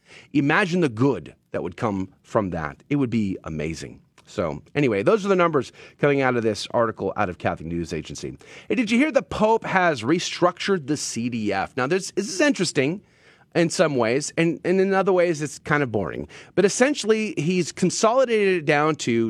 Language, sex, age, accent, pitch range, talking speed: English, male, 30-49, American, 120-180 Hz, 185 wpm